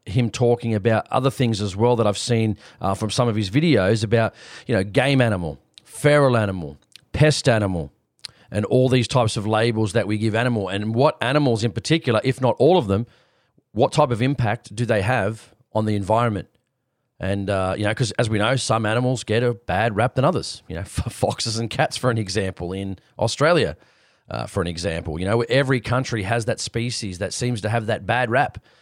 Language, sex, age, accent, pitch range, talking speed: English, male, 30-49, Australian, 105-125 Hz, 205 wpm